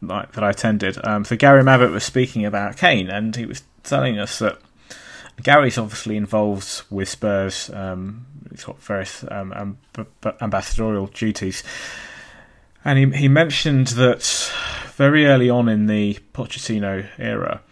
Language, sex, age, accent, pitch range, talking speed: English, male, 30-49, British, 100-125 Hz, 145 wpm